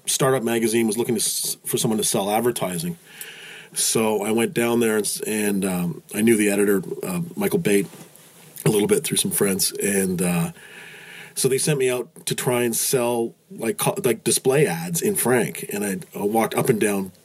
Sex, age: male, 40-59